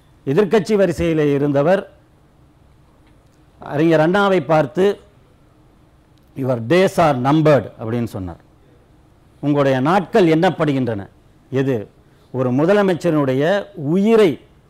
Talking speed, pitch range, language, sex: 80 wpm, 130-180 Hz, Tamil, male